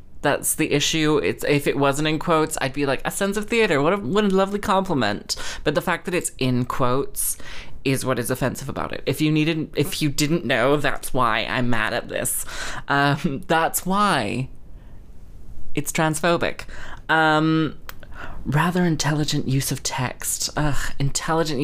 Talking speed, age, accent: 170 wpm, 20-39, British